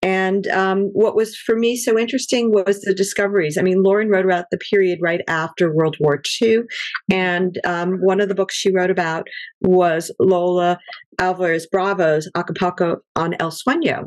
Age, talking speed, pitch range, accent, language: 50-69, 170 wpm, 175-215 Hz, American, English